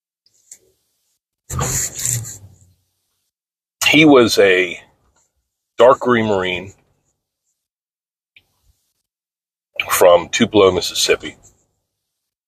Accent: American